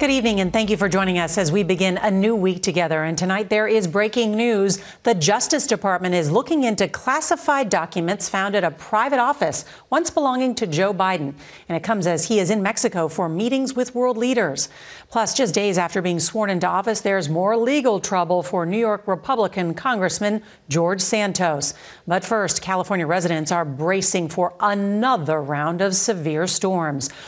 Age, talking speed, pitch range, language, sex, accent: 50-69, 185 wpm, 170-220 Hz, English, female, American